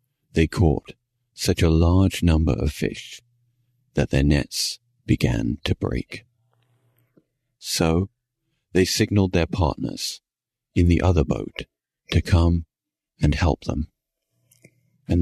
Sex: male